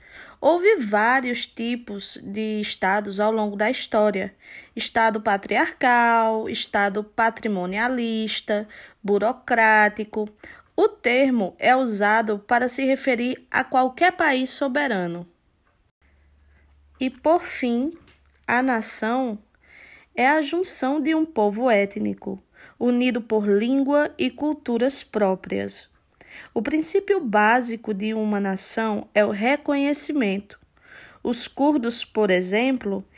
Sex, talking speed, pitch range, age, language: female, 100 wpm, 210-270 Hz, 20-39, Portuguese